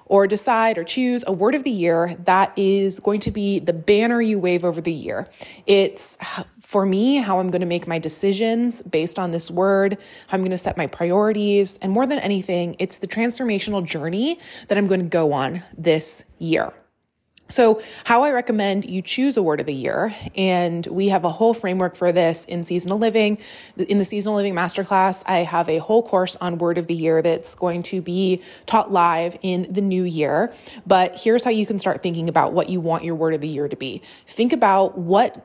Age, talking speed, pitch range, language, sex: 20-39, 215 wpm, 175-205 Hz, English, female